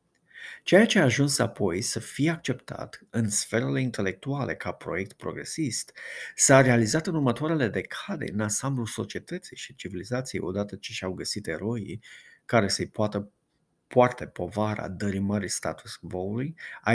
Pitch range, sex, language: 100-135 Hz, male, Romanian